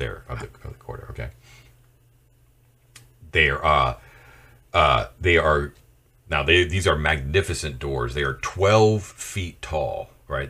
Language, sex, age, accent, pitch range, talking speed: English, male, 40-59, American, 75-120 Hz, 125 wpm